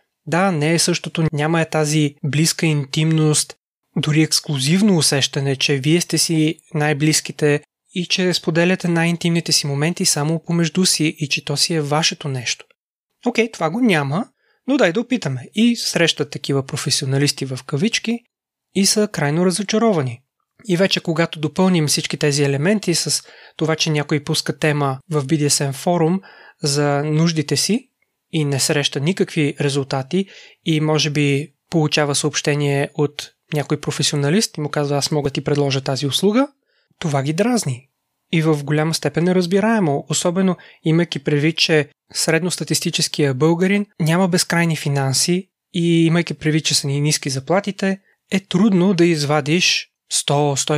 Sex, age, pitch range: male, 20-39, 145-175 Hz